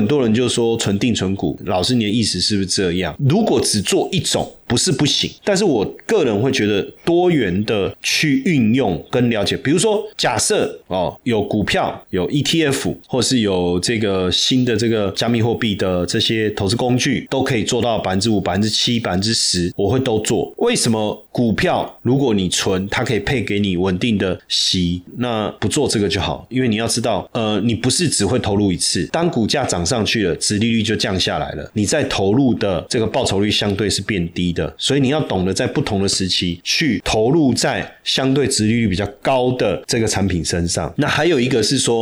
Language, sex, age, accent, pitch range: Chinese, male, 30-49, native, 95-125 Hz